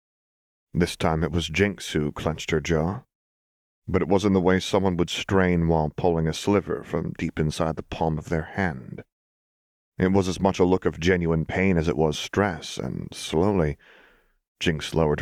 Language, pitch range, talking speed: English, 80-115 Hz, 180 wpm